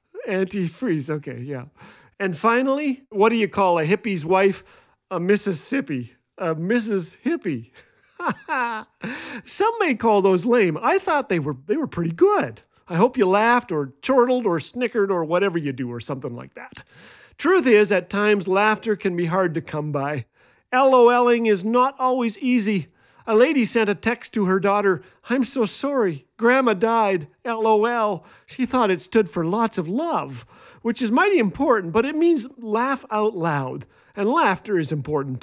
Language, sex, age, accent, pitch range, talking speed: English, male, 40-59, American, 175-250 Hz, 165 wpm